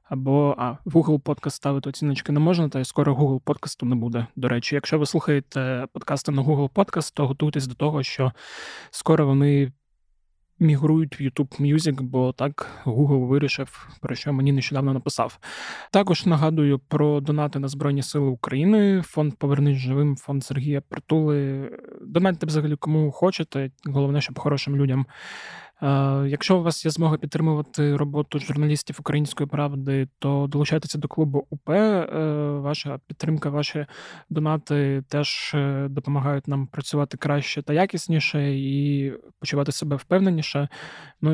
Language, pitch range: Ukrainian, 140-155 Hz